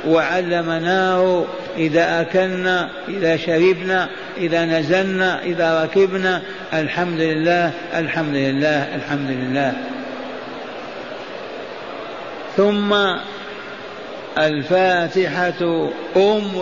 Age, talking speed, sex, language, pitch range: 60-79, 65 wpm, male, Arabic, 170-200 Hz